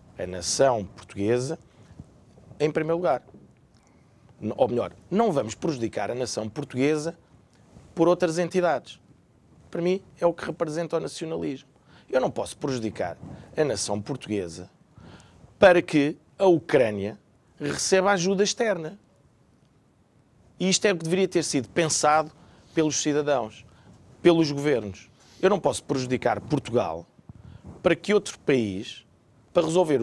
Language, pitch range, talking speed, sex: Portuguese, 110-170 Hz, 125 wpm, male